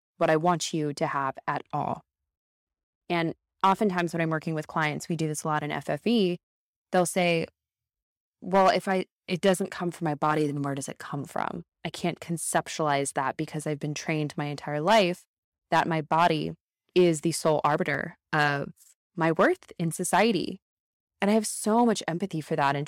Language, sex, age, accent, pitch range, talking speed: English, female, 20-39, American, 150-180 Hz, 185 wpm